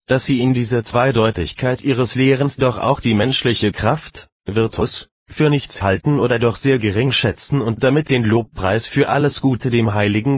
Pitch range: 110-140 Hz